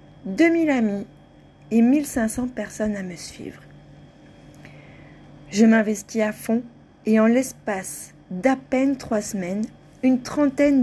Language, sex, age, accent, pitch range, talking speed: French, female, 40-59, French, 180-235 Hz, 115 wpm